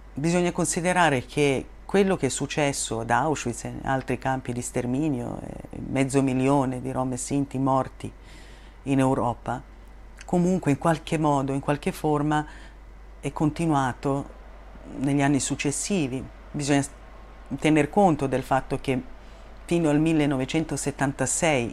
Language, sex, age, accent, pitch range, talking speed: Italian, female, 40-59, native, 130-155 Hz, 120 wpm